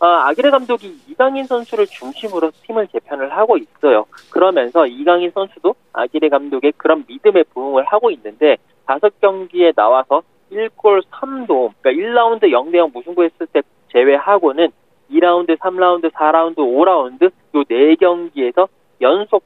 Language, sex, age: Korean, male, 30-49